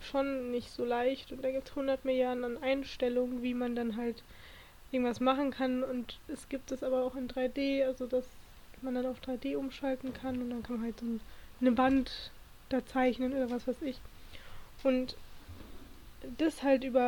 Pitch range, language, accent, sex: 245-270 Hz, German, German, female